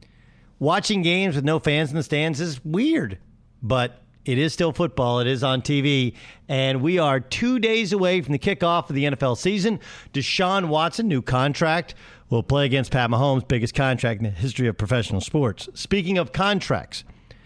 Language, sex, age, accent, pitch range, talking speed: English, male, 50-69, American, 130-185 Hz, 180 wpm